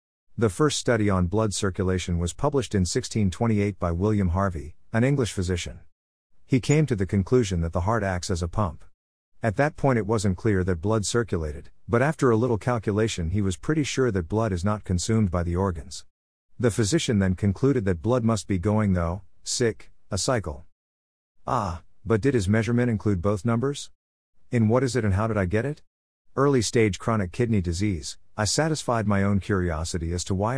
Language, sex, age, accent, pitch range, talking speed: English, male, 50-69, American, 90-115 Hz, 190 wpm